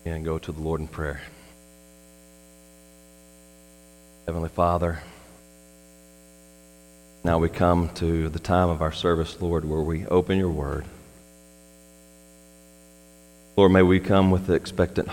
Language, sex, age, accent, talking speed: English, male, 40-59, American, 120 wpm